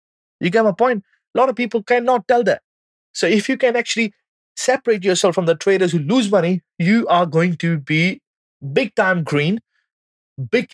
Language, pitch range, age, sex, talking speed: English, 130-190 Hz, 20-39, male, 185 wpm